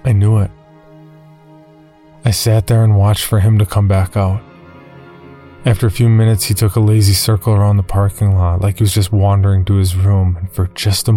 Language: English